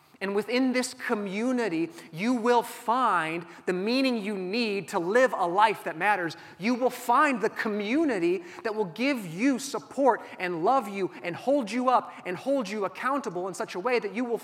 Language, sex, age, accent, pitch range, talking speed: English, male, 30-49, American, 150-215 Hz, 185 wpm